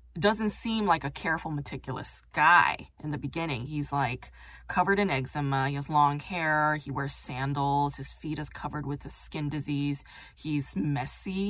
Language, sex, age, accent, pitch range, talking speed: English, female, 20-39, American, 145-195 Hz, 165 wpm